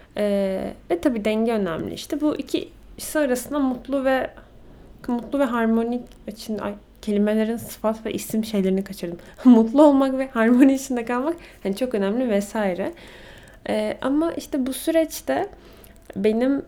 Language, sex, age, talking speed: Turkish, female, 10-29, 140 wpm